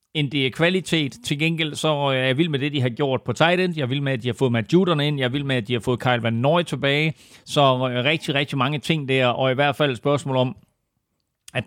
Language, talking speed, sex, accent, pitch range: Danish, 270 wpm, male, native, 125-155 Hz